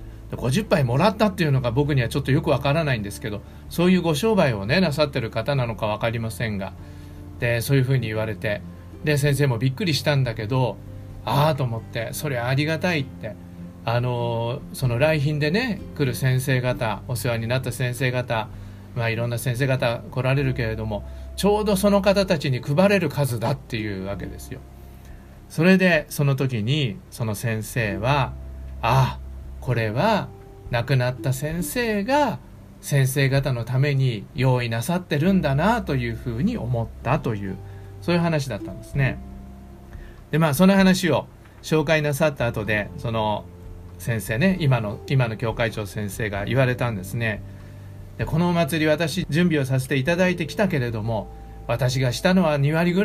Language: Japanese